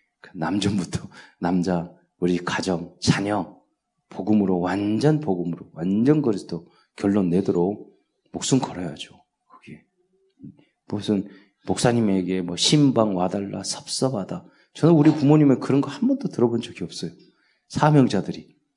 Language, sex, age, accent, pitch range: Korean, male, 40-59, native, 95-150 Hz